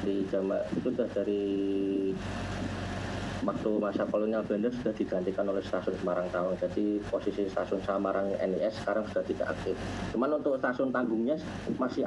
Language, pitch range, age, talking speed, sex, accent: Indonesian, 100-120 Hz, 20-39, 145 wpm, male, native